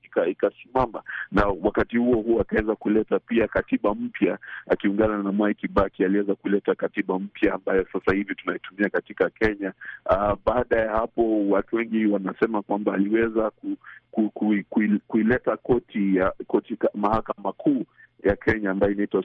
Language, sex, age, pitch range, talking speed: Swahili, male, 50-69, 95-110 Hz, 145 wpm